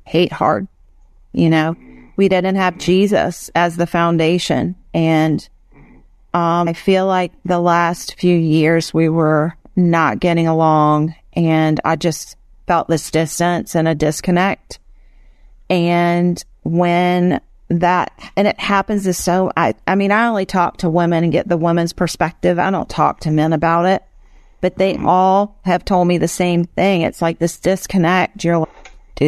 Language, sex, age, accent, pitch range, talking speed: English, female, 40-59, American, 160-185 Hz, 160 wpm